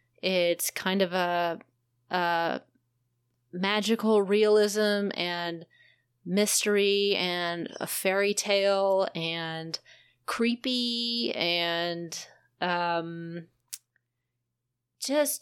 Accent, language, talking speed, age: American, English, 70 wpm, 30-49